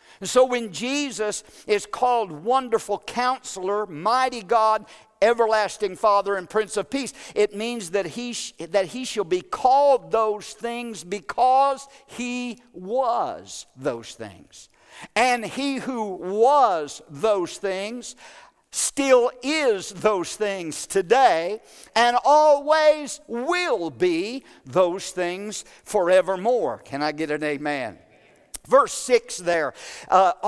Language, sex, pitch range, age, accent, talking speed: English, male, 185-245 Hz, 50-69, American, 120 wpm